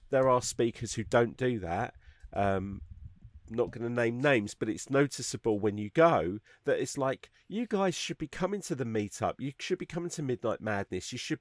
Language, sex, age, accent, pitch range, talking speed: English, male, 40-59, British, 110-140 Hz, 210 wpm